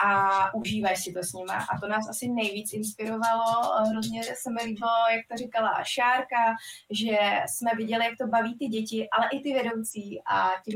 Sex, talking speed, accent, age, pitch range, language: female, 190 wpm, native, 20-39, 205-230 Hz, Czech